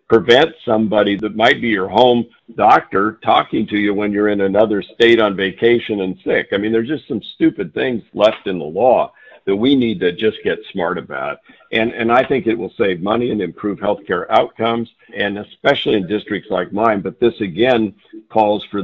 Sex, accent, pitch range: male, American, 95-115 Hz